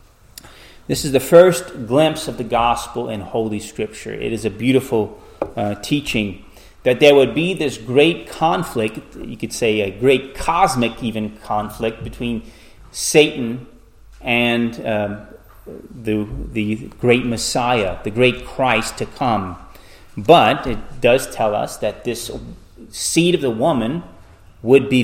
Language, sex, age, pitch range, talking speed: English, male, 30-49, 105-125 Hz, 140 wpm